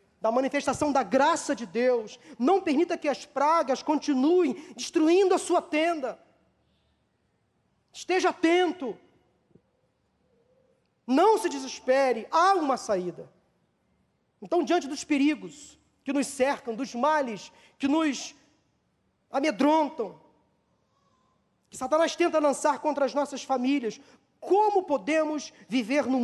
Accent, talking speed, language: Brazilian, 110 wpm, Portuguese